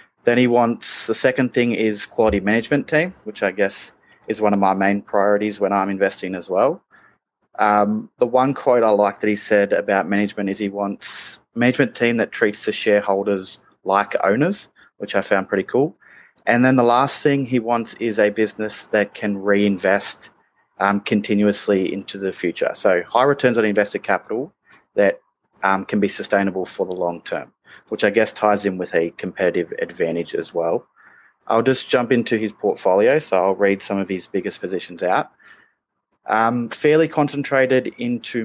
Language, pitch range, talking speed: English, 100-120 Hz, 180 wpm